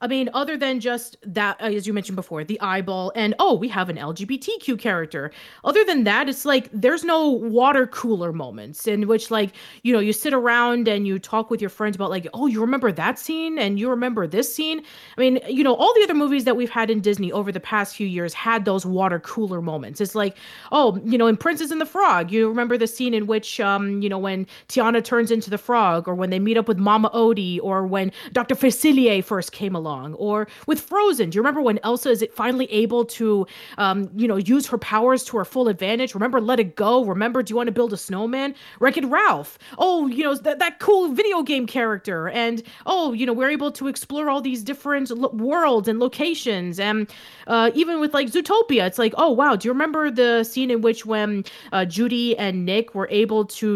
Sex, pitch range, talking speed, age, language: female, 205-260 Hz, 225 wpm, 30-49, English